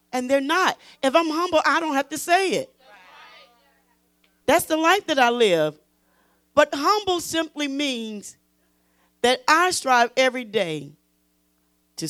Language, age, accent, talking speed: English, 40-59, American, 140 wpm